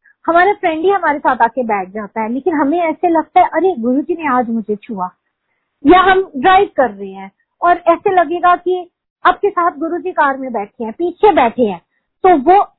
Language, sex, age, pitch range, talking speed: Hindi, female, 50-69, 235-330 Hz, 195 wpm